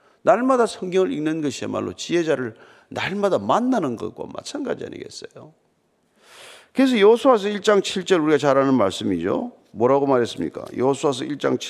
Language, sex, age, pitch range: Korean, male, 50-69, 160-250 Hz